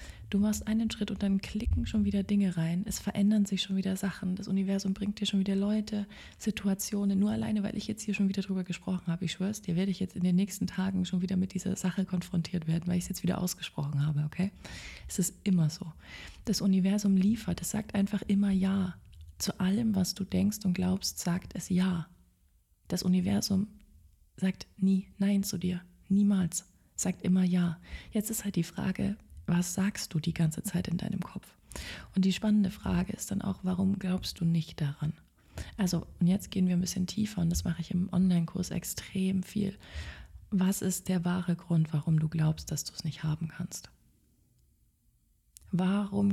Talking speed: 195 wpm